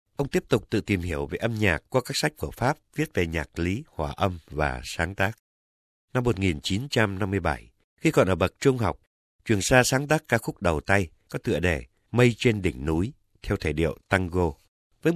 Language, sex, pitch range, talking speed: Vietnamese, male, 85-120 Hz, 200 wpm